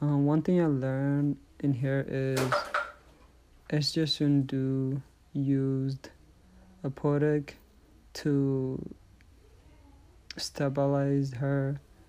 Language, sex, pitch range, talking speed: English, male, 135-145 Hz, 75 wpm